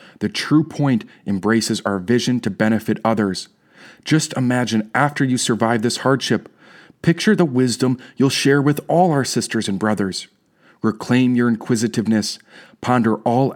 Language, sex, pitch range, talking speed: English, male, 110-130 Hz, 140 wpm